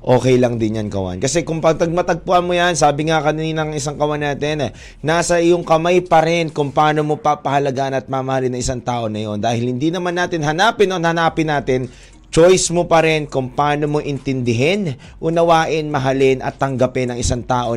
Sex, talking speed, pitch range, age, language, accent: male, 190 wpm, 130-170 Hz, 20-39, Filipino, native